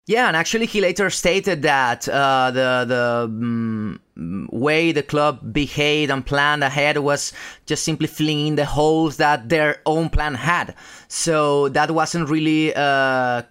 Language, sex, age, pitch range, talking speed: English, male, 30-49, 140-175 Hz, 150 wpm